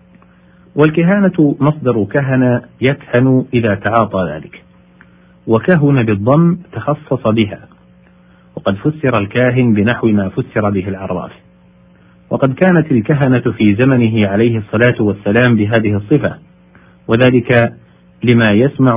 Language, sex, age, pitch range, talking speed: Arabic, male, 50-69, 90-135 Hz, 100 wpm